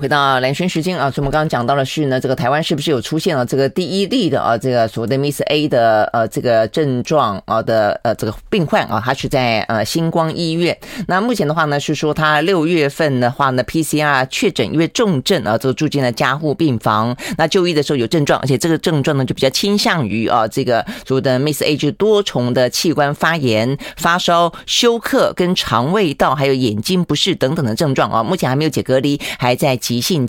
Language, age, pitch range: Chinese, 20-39, 130-170 Hz